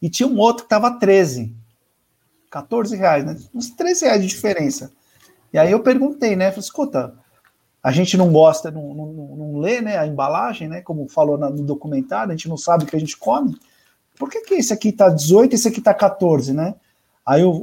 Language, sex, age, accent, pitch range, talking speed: Portuguese, male, 50-69, Brazilian, 150-215 Hz, 210 wpm